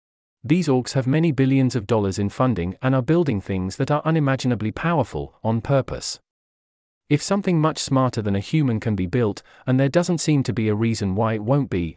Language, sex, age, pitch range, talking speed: English, male, 40-59, 100-140 Hz, 205 wpm